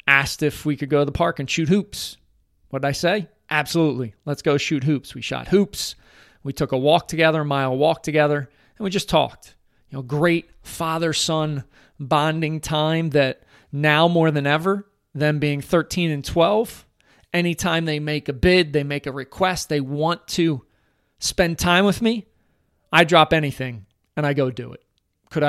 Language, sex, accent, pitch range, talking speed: English, male, American, 135-165 Hz, 180 wpm